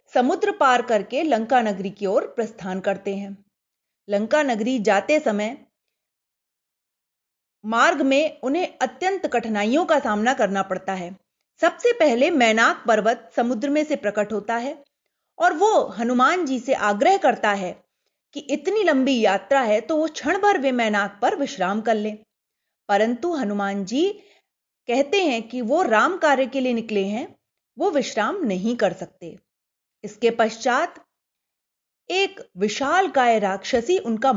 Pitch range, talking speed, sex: 210-315 Hz, 145 wpm, female